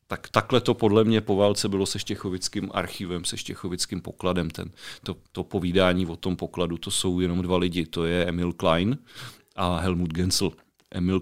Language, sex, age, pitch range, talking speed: Czech, male, 40-59, 90-105 Hz, 180 wpm